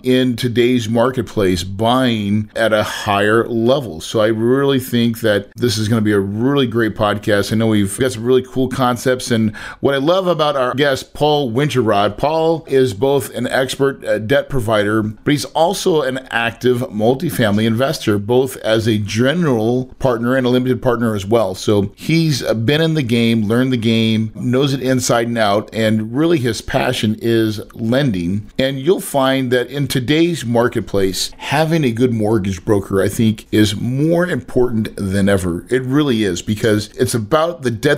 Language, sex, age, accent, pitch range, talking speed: English, male, 40-59, American, 110-135 Hz, 175 wpm